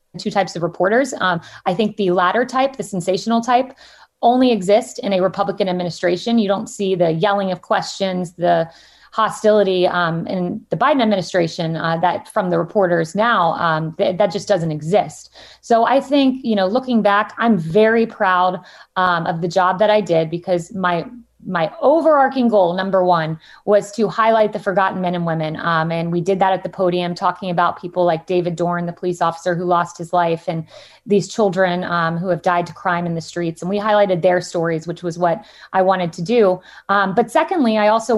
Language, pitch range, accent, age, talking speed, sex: English, 175-215 Hz, American, 30-49, 200 wpm, female